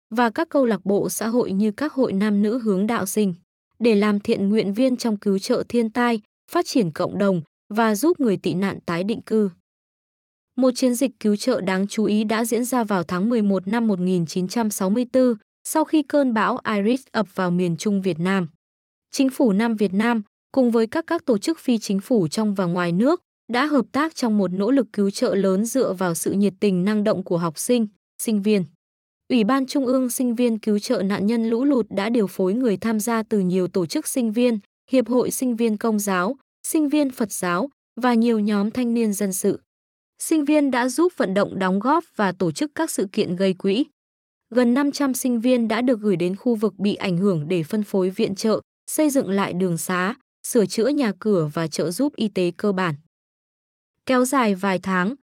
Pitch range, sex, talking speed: 195-250 Hz, female, 215 wpm